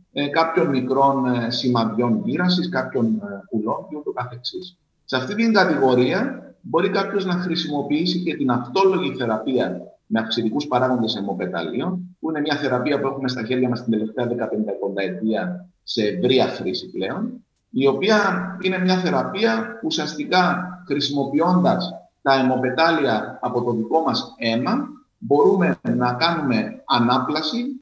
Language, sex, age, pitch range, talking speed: Greek, male, 50-69, 125-180 Hz, 130 wpm